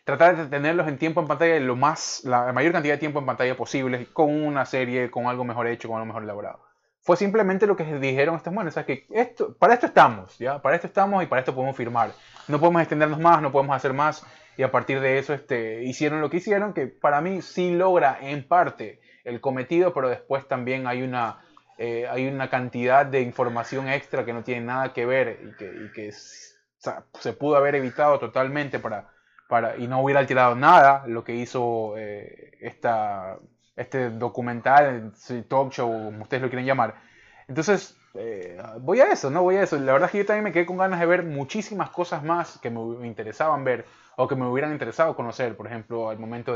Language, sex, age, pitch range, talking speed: Spanish, male, 20-39, 120-165 Hz, 220 wpm